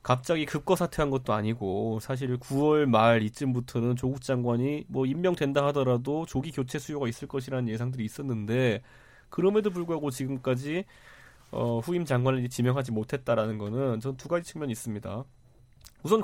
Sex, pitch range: male, 125-185 Hz